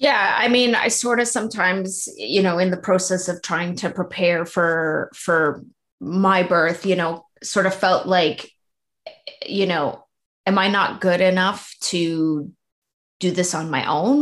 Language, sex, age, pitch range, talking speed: English, female, 30-49, 180-215 Hz, 165 wpm